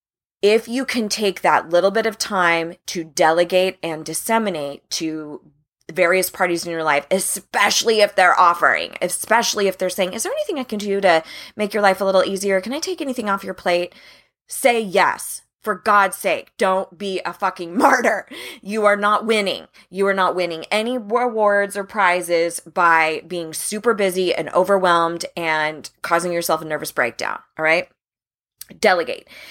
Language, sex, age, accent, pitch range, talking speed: English, female, 20-39, American, 175-215 Hz, 170 wpm